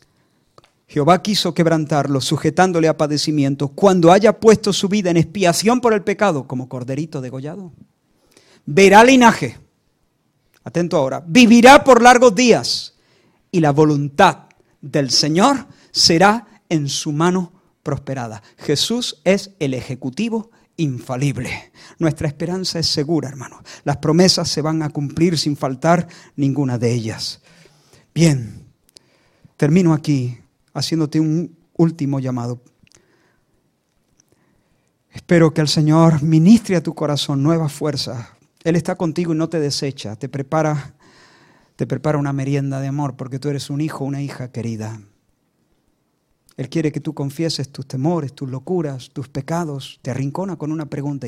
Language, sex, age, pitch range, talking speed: Spanish, male, 50-69, 135-170 Hz, 135 wpm